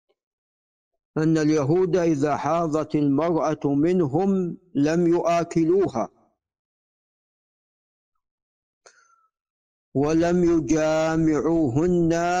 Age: 50-69